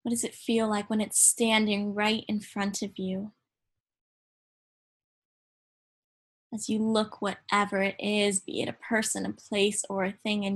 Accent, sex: American, female